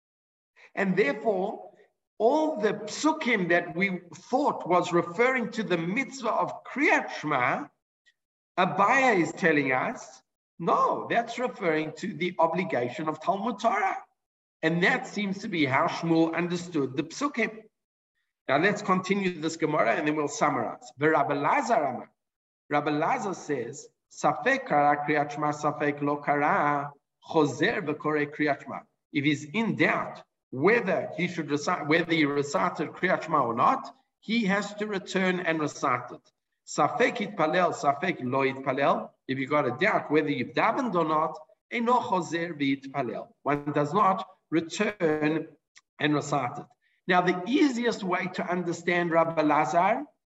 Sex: male